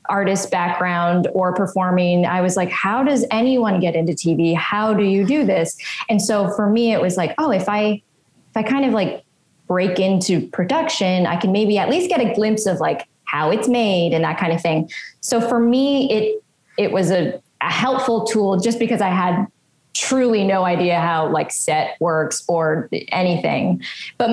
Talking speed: 190 wpm